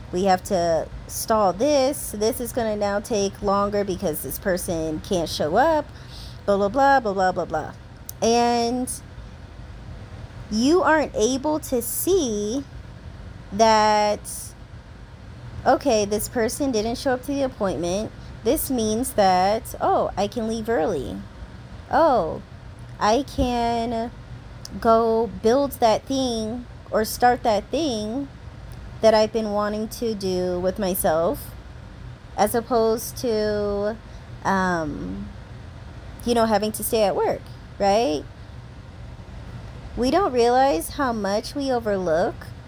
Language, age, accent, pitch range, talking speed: English, 20-39, American, 175-235 Hz, 120 wpm